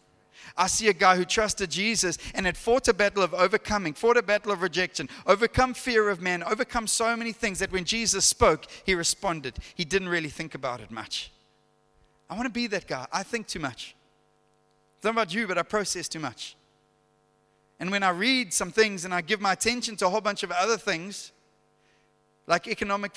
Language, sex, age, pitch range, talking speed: English, male, 30-49, 180-230 Hz, 200 wpm